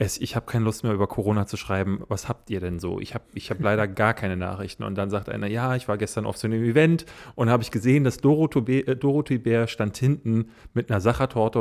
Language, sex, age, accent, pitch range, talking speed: German, male, 30-49, German, 110-130 Hz, 250 wpm